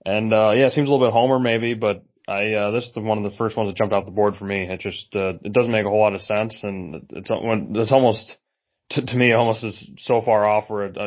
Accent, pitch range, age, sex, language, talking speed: American, 95-105 Hz, 20-39, male, English, 295 wpm